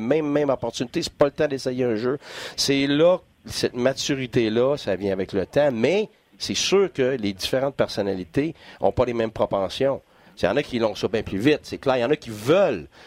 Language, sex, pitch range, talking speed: French, male, 110-155 Hz, 220 wpm